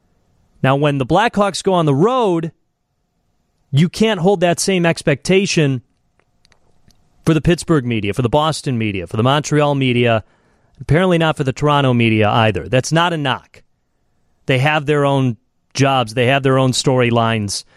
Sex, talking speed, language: male, 160 wpm, English